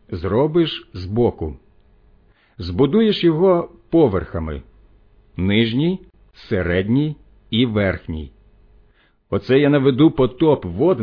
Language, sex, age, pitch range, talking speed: Ukrainian, male, 50-69, 100-140 Hz, 80 wpm